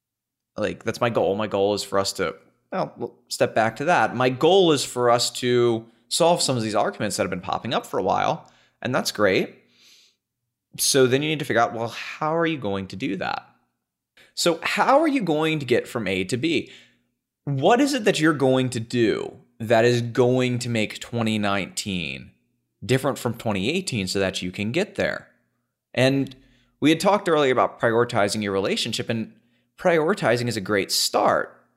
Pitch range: 100-135 Hz